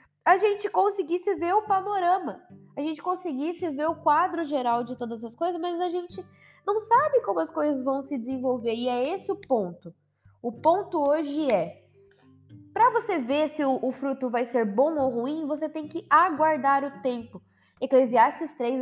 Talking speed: 180 wpm